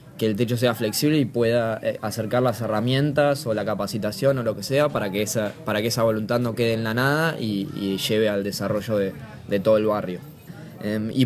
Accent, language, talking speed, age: Argentinian, Spanish, 205 wpm, 20-39